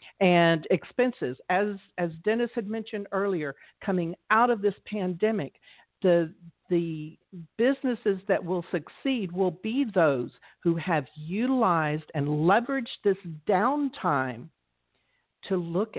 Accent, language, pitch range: American, English, 150-195 Hz